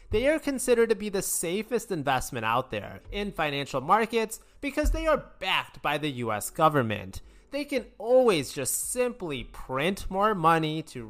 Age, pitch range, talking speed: 20-39, 135-215 Hz, 160 wpm